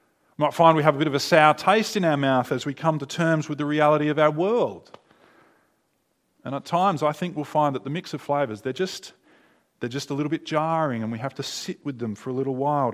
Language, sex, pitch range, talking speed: English, male, 130-175 Hz, 255 wpm